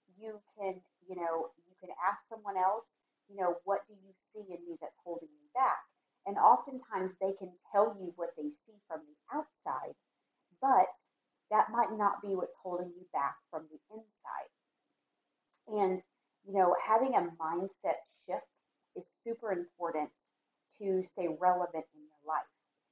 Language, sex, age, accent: English, female, 30-49, American